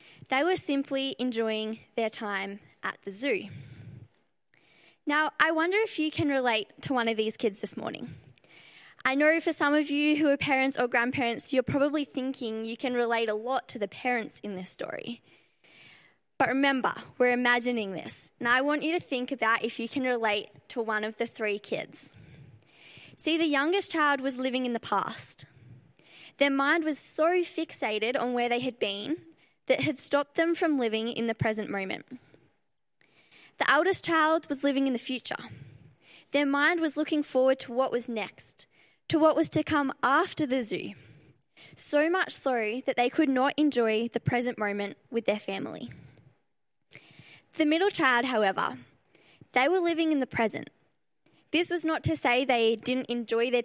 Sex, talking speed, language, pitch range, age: female, 175 wpm, English, 220-290 Hz, 10-29